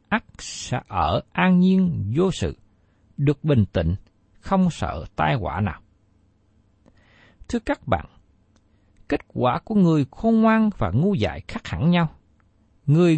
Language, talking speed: Vietnamese, 135 wpm